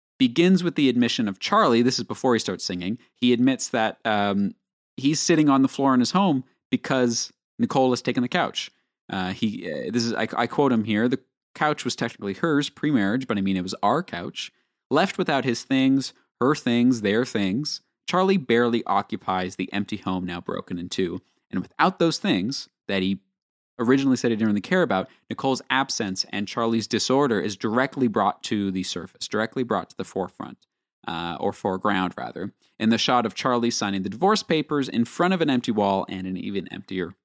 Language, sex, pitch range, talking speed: English, male, 100-140 Hz, 195 wpm